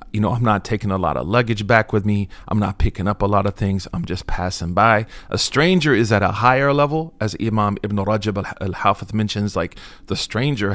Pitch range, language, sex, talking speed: 95-115 Hz, English, male, 230 wpm